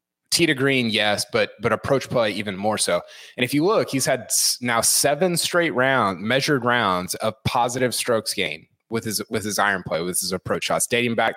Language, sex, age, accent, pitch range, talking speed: English, male, 20-39, American, 110-145 Hz, 205 wpm